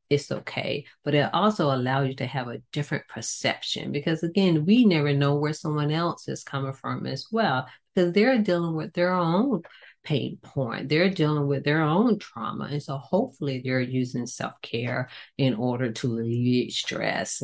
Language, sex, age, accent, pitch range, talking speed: English, female, 40-59, American, 125-150 Hz, 170 wpm